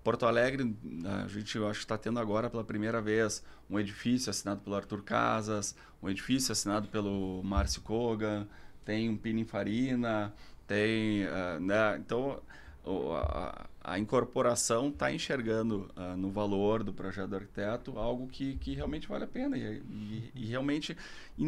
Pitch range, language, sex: 100-120 Hz, Portuguese, male